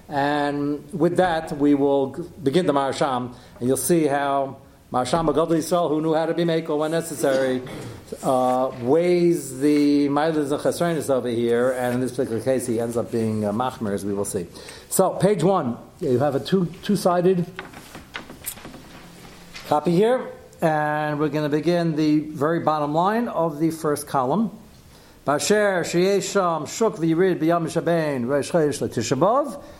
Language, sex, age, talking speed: English, male, 60-79, 145 wpm